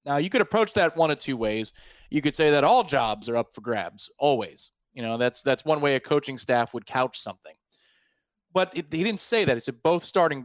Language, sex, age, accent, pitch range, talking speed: English, male, 30-49, American, 130-165 Hz, 235 wpm